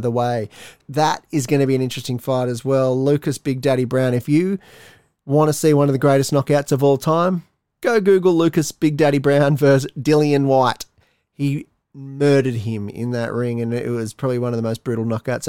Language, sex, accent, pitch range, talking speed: English, male, Australian, 130-155 Hz, 210 wpm